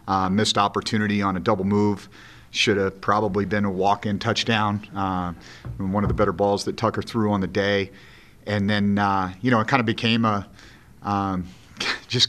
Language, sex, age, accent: English, male, 40-59, American